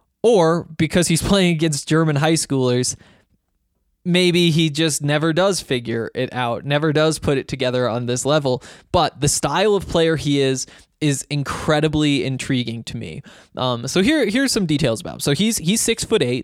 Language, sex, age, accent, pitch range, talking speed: English, male, 20-39, American, 135-165 Hz, 185 wpm